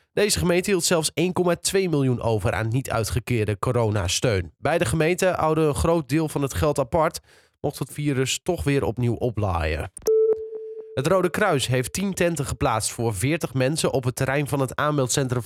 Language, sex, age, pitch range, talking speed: Dutch, male, 20-39, 125-165 Hz, 170 wpm